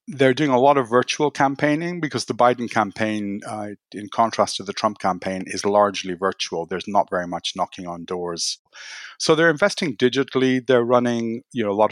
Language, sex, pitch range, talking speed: English, male, 100-130 Hz, 190 wpm